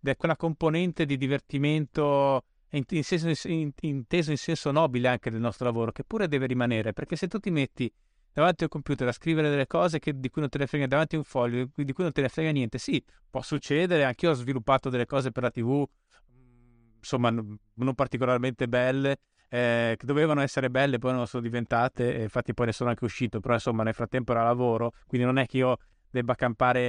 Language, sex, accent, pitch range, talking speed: Italian, male, native, 120-155 Hz, 215 wpm